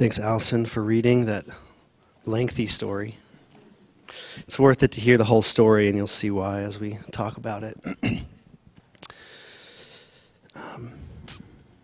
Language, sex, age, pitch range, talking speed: English, male, 30-49, 100-115 Hz, 125 wpm